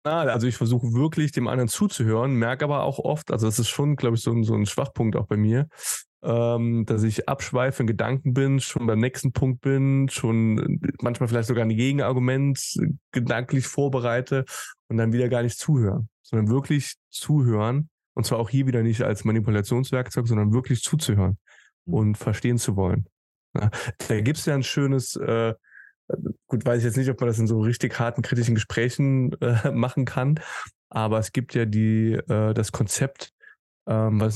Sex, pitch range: male, 115-135 Hz